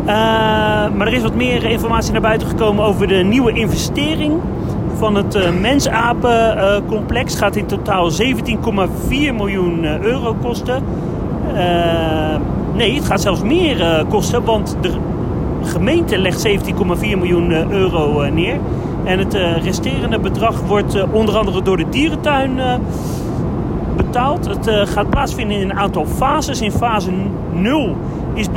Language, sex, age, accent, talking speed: Dutch, male, 40-59, Dutch, 150 wpm